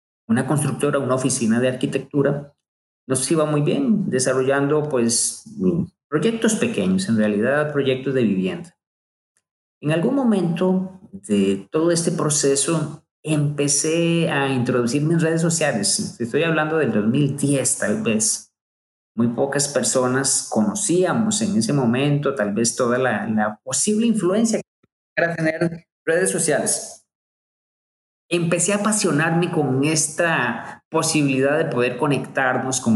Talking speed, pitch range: 120 wpm, 125-175 Hz